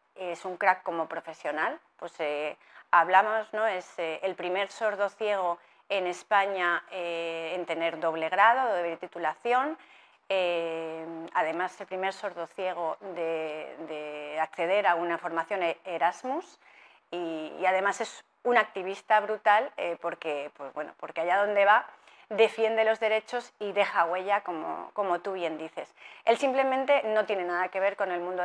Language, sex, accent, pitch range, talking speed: Spanish, female, Spanish, 170-215 Hz, 150 wpm